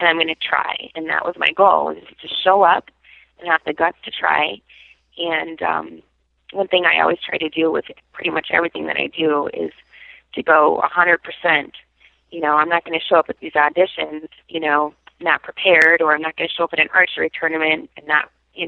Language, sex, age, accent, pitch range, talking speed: English, female, 30-49, American, 155-180 Hz, 230 wpm